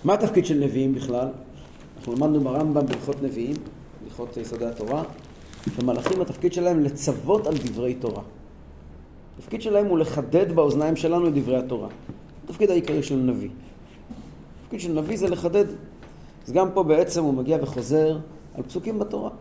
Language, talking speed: Hebrew, 150 wpm